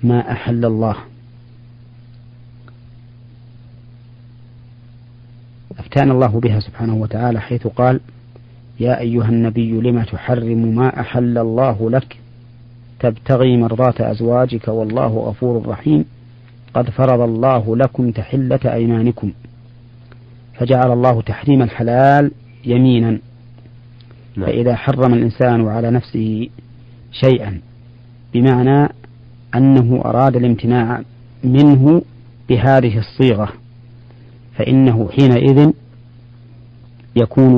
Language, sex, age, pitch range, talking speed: Arabic, male, 40-59, 120-125 Hz, 85 wpm